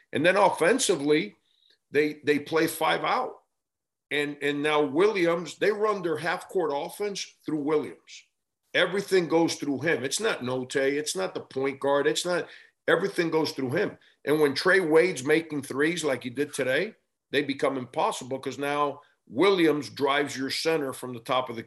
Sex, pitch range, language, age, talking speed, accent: male, 130-170 Hz, English, 50-69, 170 wpm, American